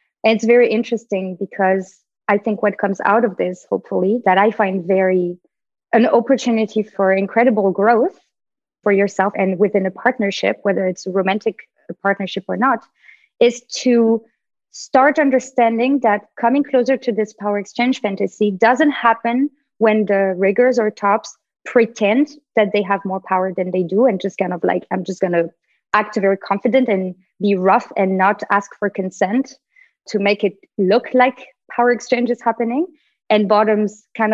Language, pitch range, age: English, 195-240 Hz, 20-39